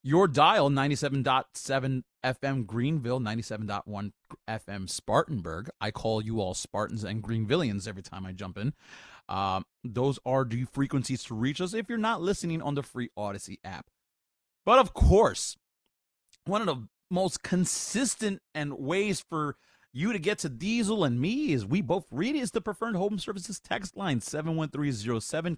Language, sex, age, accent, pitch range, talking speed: English, male, 30-49, American, 110-165 Hz, 155 wpm